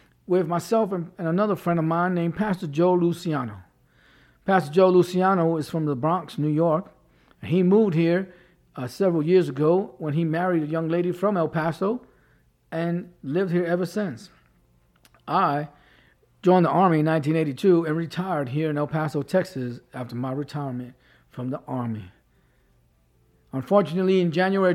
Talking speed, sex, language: 155 wpm, male, English